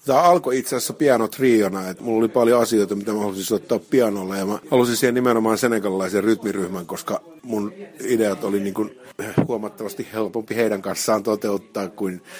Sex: male